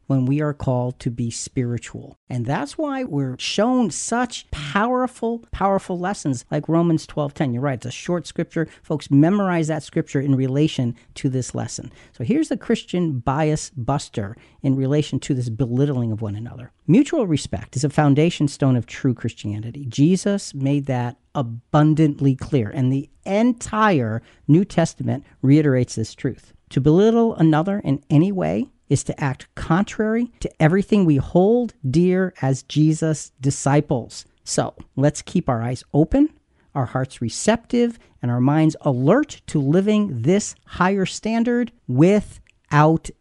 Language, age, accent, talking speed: English, 50-69, American, 150 wpm